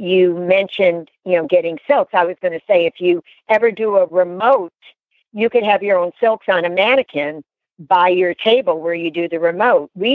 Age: 60-79